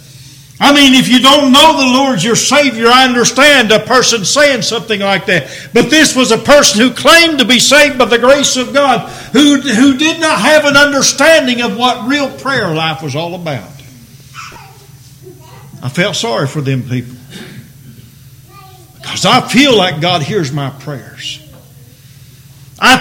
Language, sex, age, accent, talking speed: English, male, 50-69, American, 165 wpm